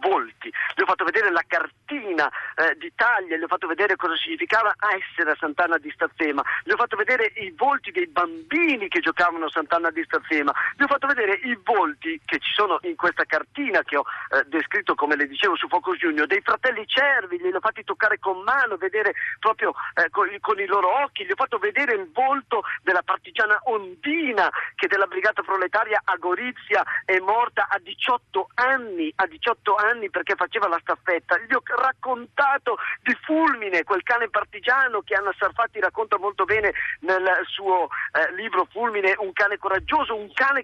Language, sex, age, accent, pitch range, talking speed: Italian, male, 40-59, native, 190-290 Hz, 180 wpm